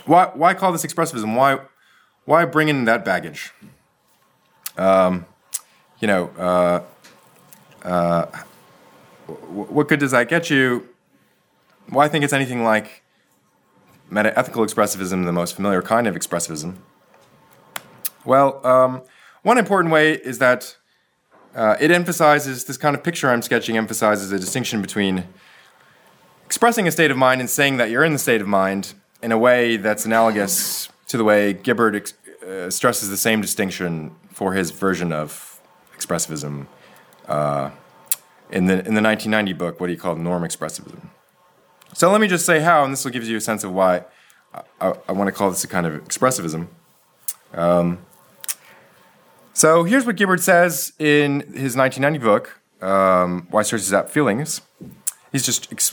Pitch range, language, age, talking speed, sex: 95-150 Hz, English, 20-39, 155 wpm, male